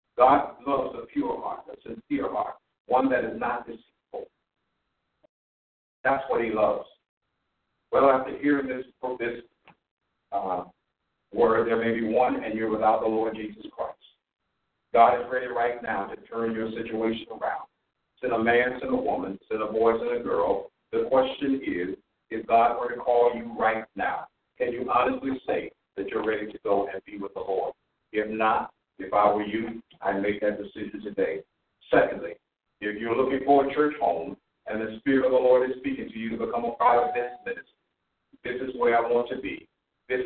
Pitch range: 110-130 Hz